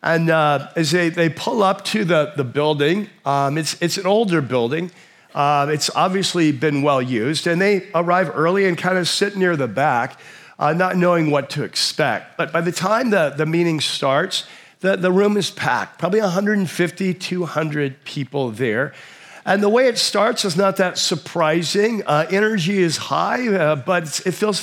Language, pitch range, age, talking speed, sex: English, 145-185 Hz, 50-69, 185 wpm, male